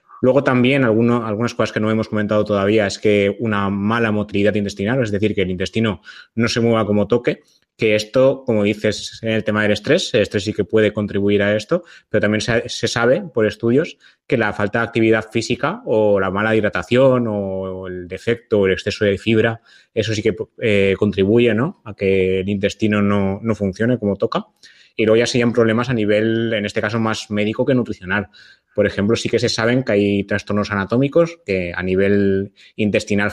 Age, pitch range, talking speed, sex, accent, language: 20-39, 100-115 Hz, 200 wpm, male, Spanish, Spanish